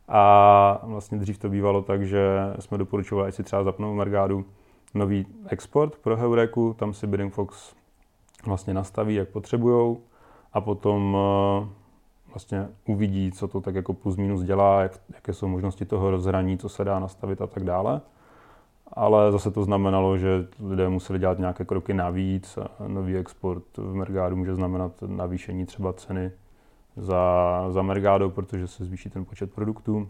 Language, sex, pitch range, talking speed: Czech, male, 95-105 Hz, 155 wpm